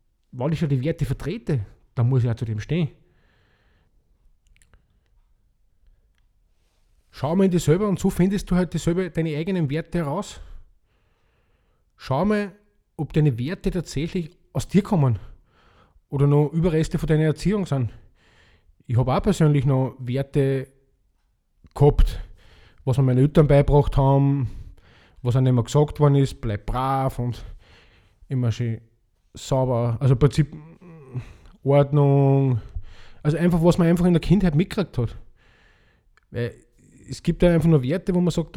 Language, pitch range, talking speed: German, 115-160 Hz, 145 wpm